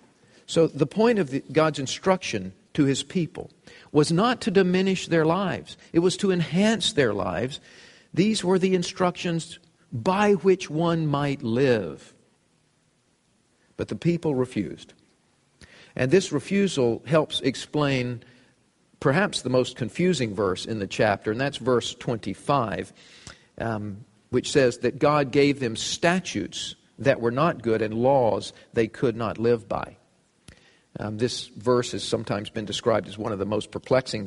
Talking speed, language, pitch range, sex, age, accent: 145 wpm, English, 115-160 Hz, male, 50-69, American